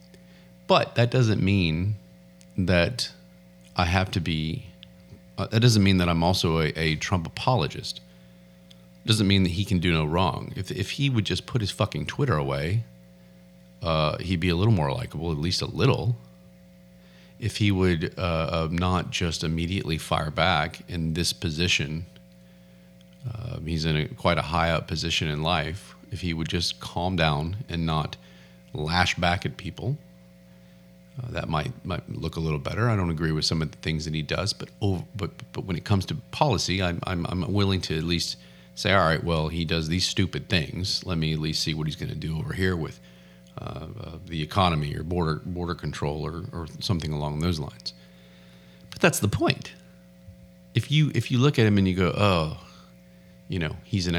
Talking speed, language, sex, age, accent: 195 wpm, English, male, 40-59, American